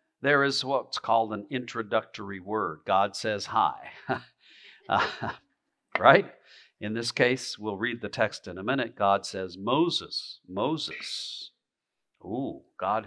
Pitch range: 110-145 Hz